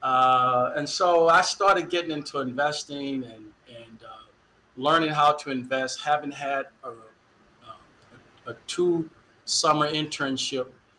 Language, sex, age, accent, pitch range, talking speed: English, male, 50-69, American, 125-160 Hz, 125 wpm